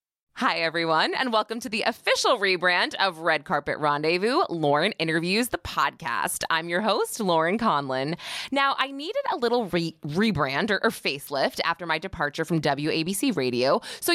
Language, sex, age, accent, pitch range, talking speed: English, female, 20-39, American, 145-220 Hz, 160 wpm